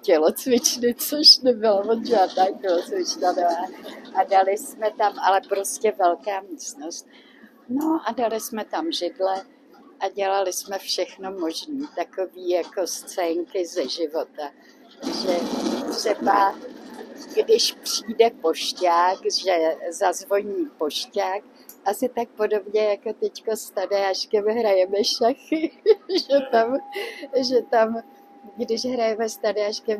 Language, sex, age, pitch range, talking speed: Czech, female, 60-79, 185-260 Hz, 110 wpm